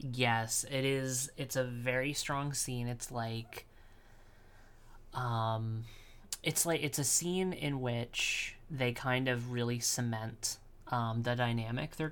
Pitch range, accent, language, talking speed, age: 115-130 Hz, American, English, 135 wpm, 30-49